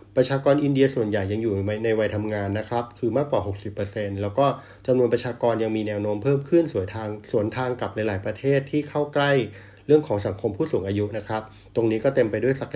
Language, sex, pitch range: Thai, male, 105-130 Hz